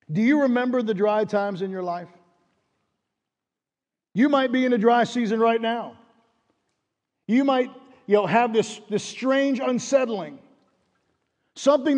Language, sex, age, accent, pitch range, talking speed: English, male, 50-69, American, 220-280 Hz, 140 wpm